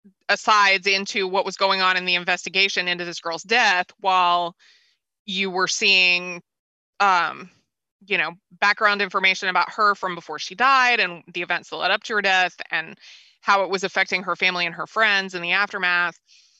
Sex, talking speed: female, 180 wpm